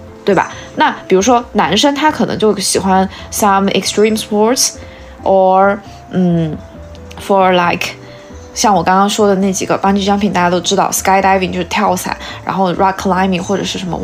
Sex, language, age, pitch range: female, Chinese, 20-39, 185-210 Hz